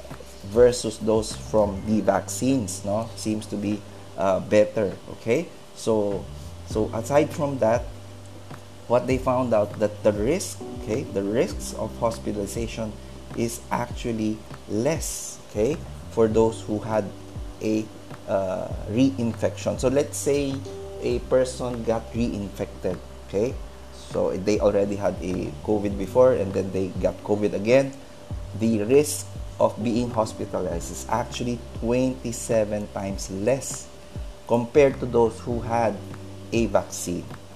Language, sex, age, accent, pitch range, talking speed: English, male, 20-39, Filipino, 100-115 Hz, 125 wpm